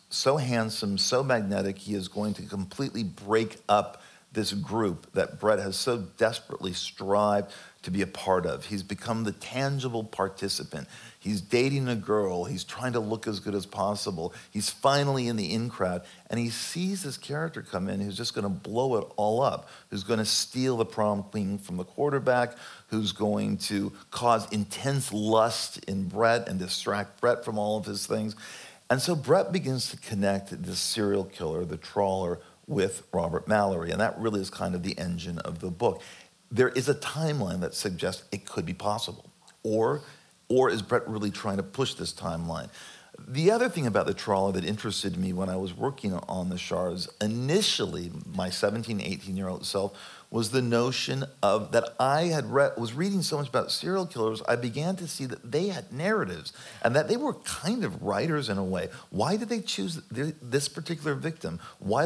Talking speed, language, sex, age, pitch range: 190 wpm, English, male, 50-69, 100-140 Hz